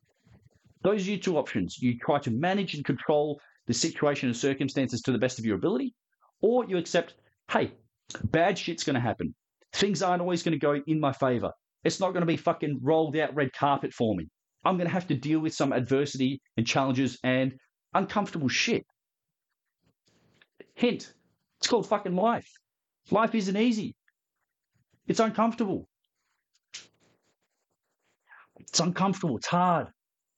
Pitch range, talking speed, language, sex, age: 130-180 Hz, 155 wpm, English, male, 40-59